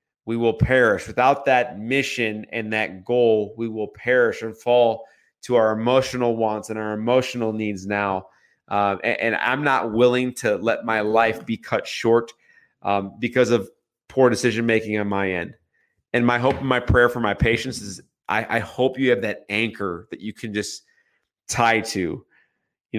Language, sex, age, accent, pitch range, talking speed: English, male, 30-49, American, 105-125 Hz, 180 wpm